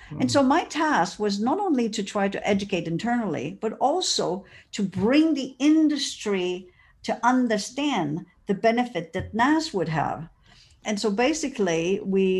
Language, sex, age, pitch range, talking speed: English, female, 50-69, 170-225 Hz, 145 wpm